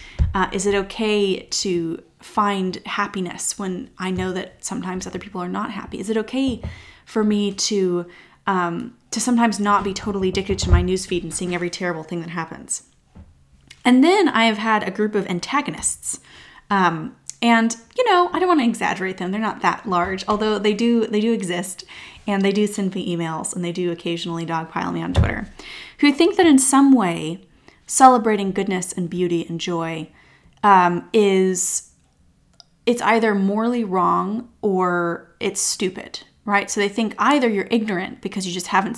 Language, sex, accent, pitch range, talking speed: English, female, American, 175-220 Hz, 175 wpm